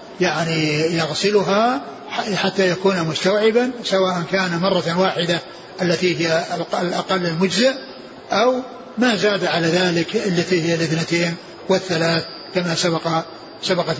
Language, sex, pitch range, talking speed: Arabic, male, 170-205 Hz, 105 wpm